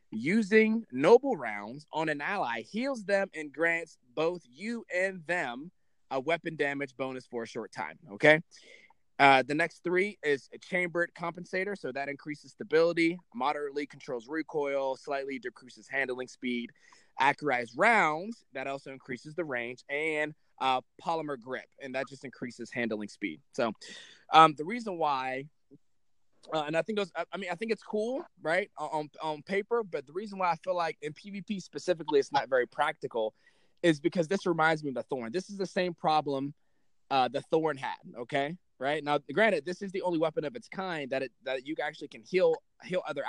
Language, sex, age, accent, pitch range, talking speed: English, male, 20-39, American, 140-185 Hz, 180 wpm